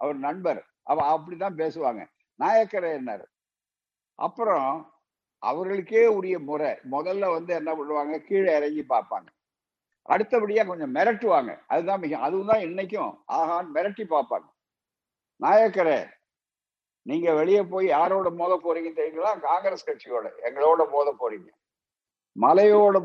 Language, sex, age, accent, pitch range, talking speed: Tamil, male, 60-79, native, 160-215 Hz, 110 wpm